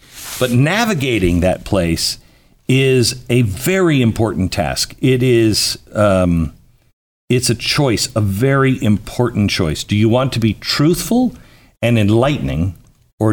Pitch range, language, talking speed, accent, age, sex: 95-125 Hz, English, 125 wpm, American, 50-69, male